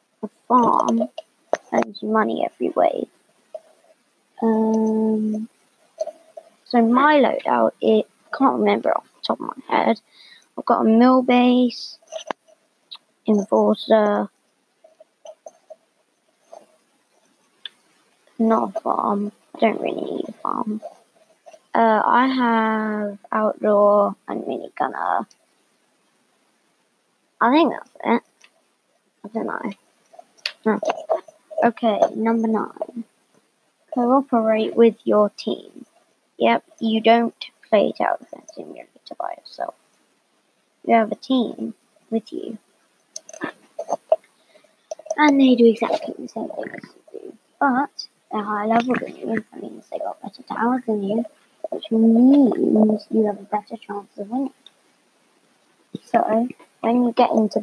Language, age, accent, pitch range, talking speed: English, 20-39, British, 220-315 Hz, 115 wpm